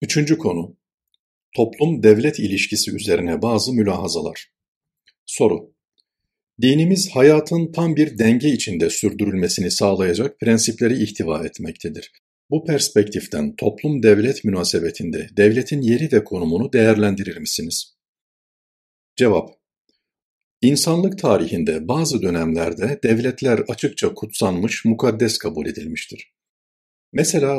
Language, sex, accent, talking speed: Turkish, male, native, 90 wpm